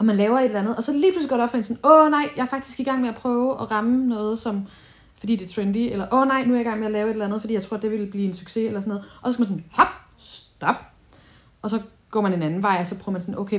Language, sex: Danish, female